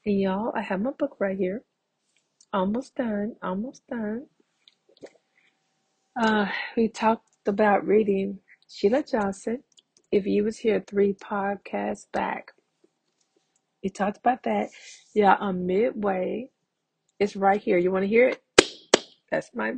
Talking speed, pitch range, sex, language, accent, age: 130 wpm, 185-220 Hz, female, English, American, 40-59